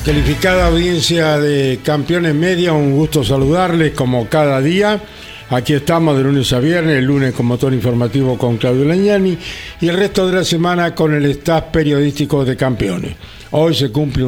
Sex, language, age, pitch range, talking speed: male, Spanish, 60-79, 125-155 Hz, 170 wpm